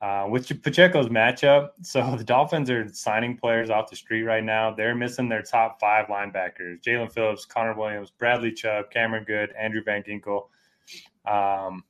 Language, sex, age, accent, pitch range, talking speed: English, male, 20-39, American, 100-120 Hz, 165 wpm